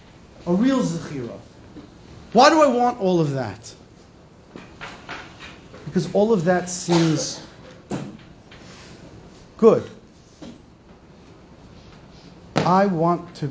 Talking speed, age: 85 wpm, 40-59